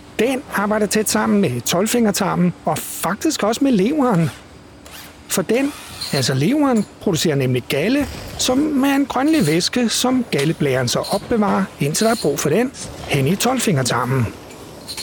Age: 60-79